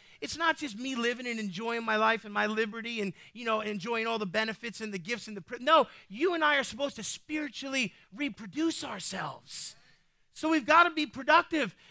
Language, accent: English, American